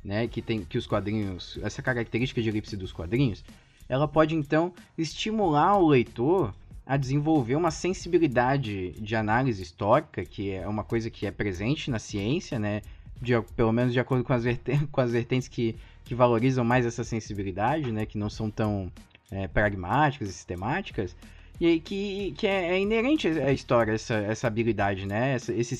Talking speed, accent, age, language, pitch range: 170 wpm, Brazilian, 20-39, Portuguese, 105-155 Hz